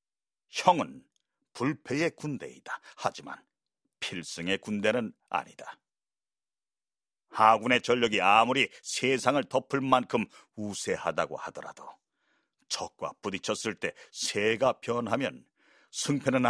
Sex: male